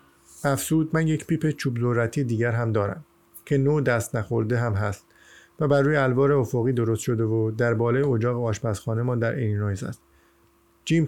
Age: 50-69